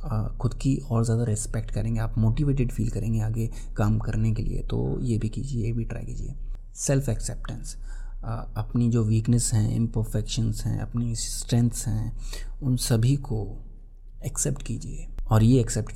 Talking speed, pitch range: 160 wpm, 110-130 Hz